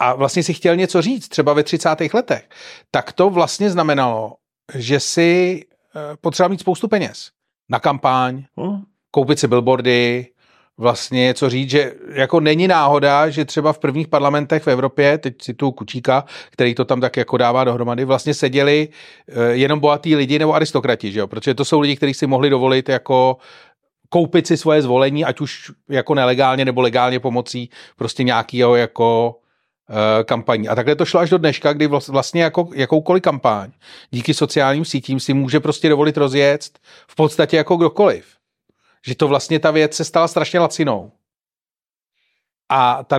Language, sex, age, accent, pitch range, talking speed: Czech, male, 30-49, native, 135-165 Hz, 165 wpm